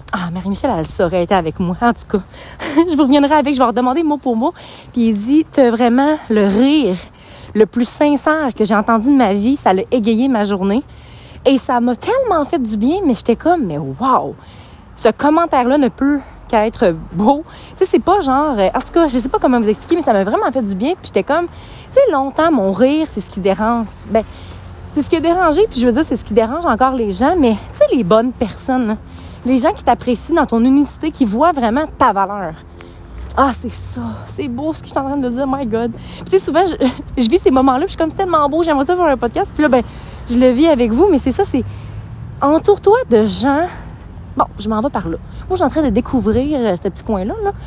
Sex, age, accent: female, 30-49, Canadian